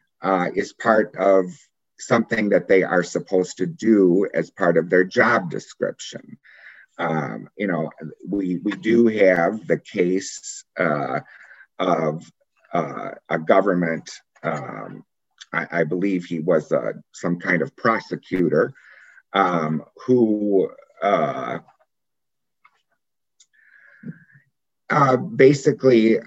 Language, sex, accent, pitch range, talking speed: English, male, American, 80-100 Hz, 105 wpm